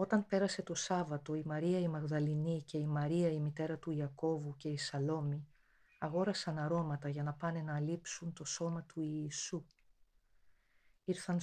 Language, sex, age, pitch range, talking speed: Greek, female, 40-59, 145-175 Hz, 160 wpm